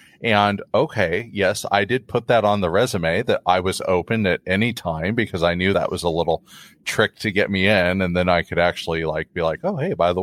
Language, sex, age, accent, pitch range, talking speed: English, male, 30-49, American, 95-150 Hz, 240 wpm